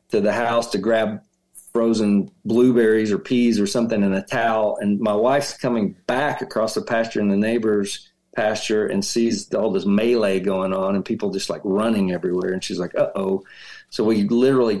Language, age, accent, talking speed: English, 50-69, American, 190 wpm